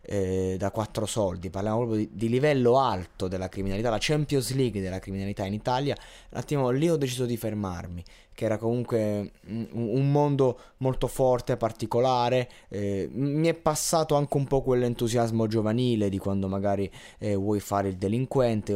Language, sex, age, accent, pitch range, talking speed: Italian, male, 20-39, native, 100-130 Hz, 165 wpm